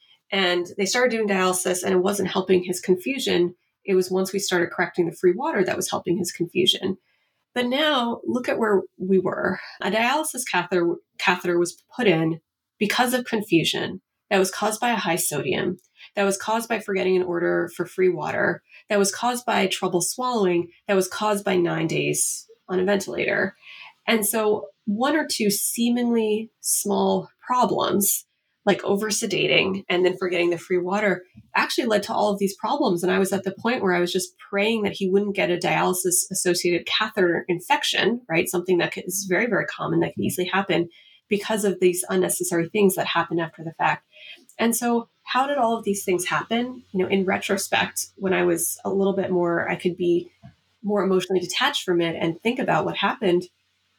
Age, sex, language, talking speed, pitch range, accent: 30-49, female, English, 190 wpm, 180-210 Hz, American